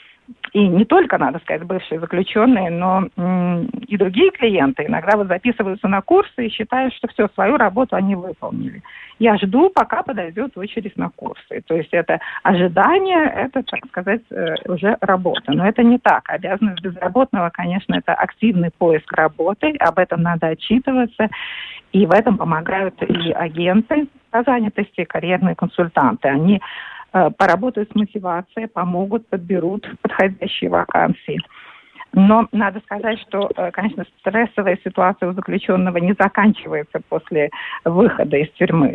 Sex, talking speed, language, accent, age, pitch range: female, 140 wpm, Russian, native, 50-69, 180-230 Hz